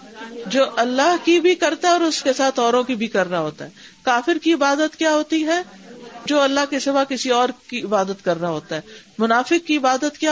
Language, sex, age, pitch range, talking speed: Urdu, female, 50-69, 210-270 Hz, 215 wpm